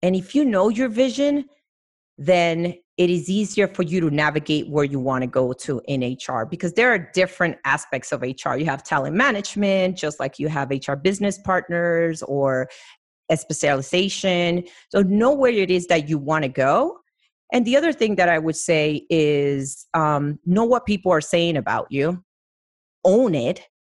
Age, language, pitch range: 30-49, English, 155-205 Hz